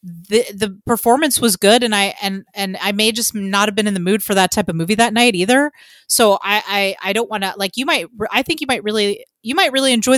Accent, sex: American, female